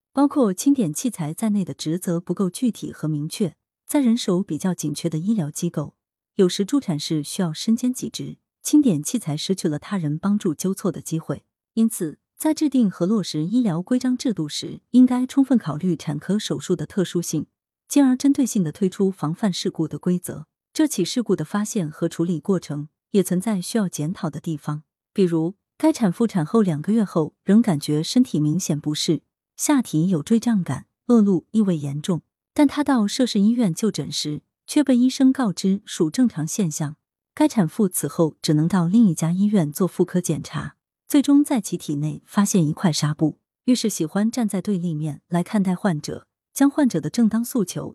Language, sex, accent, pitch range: Chinese, female, native, 155-225 Hz